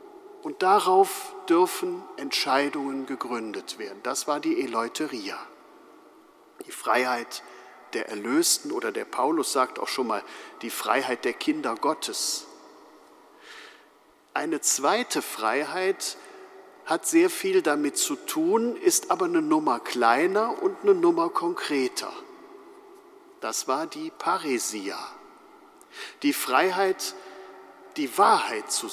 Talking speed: 110 wpm